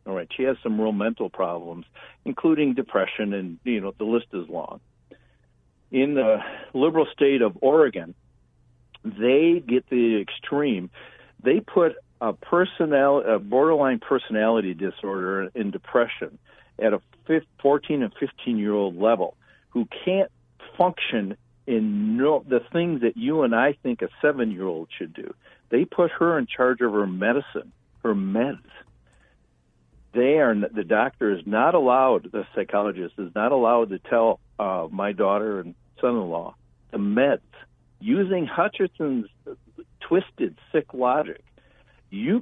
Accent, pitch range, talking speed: American, 110-180 Hz, 140 wpm